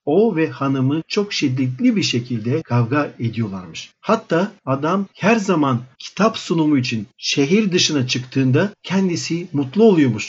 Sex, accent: male, native